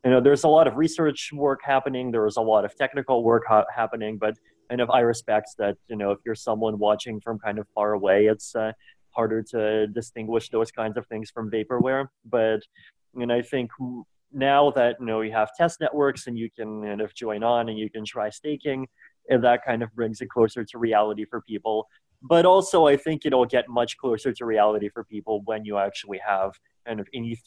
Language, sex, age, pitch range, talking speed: English, male, 20-39, 105-125 Hz, 225 wpm